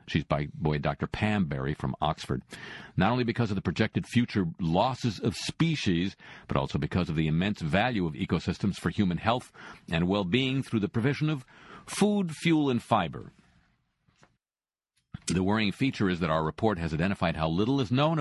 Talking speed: 175 wpm